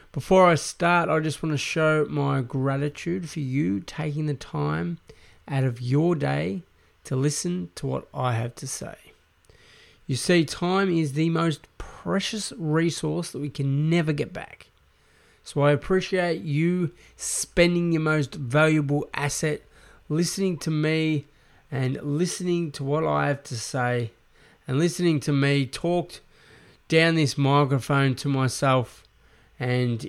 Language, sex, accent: English, male, Australian